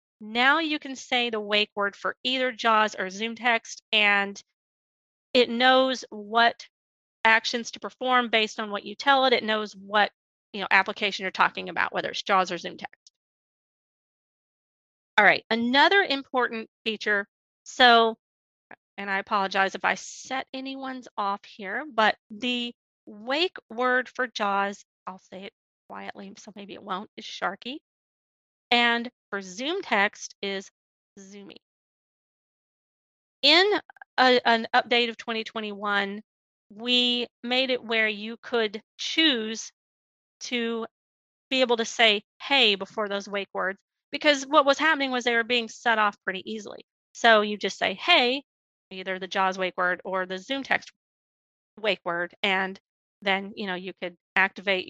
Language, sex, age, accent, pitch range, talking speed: English, female, 30-49, American, 200-250 Hz, 145 wpm